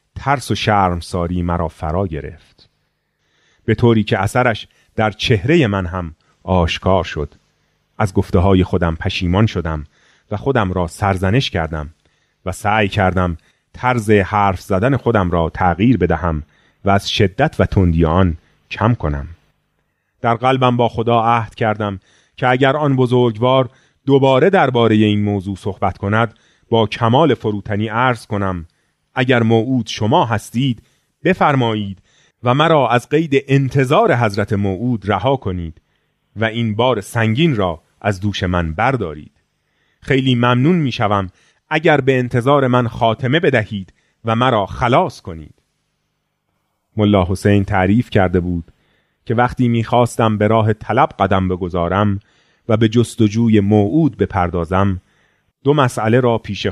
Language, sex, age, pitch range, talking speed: Persian, male, 30-49, 95-125 Hz, 130 wpm